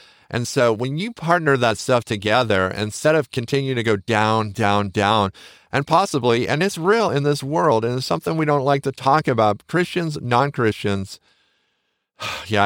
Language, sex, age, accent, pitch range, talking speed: English, male, 40-59, American, 95-125 Hz, 170 wpm